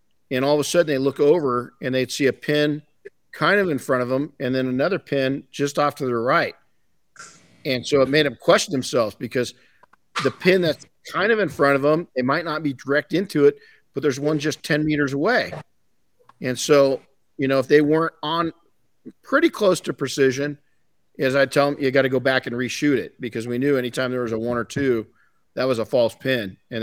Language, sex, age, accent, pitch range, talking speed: English, male, 50-69, American, 120-145 Hz, 220 wpm